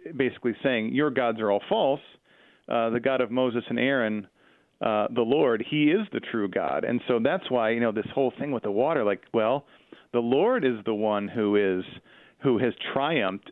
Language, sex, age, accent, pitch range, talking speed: English, male, 50-69, American, 110-130 Hz, 205 wpm